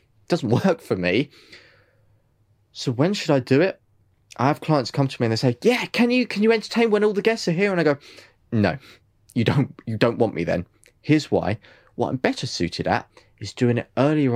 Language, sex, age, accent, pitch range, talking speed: English, male, 20-39, British, 110-150 Hz, 220 wpm